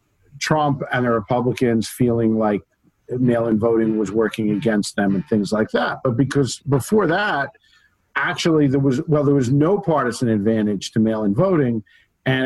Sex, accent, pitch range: male, American, 115-145 Hz